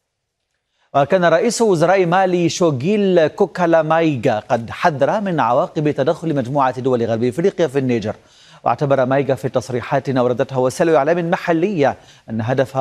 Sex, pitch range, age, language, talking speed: male, 125-160 Hz, 40-59, Arabic, 130 wpm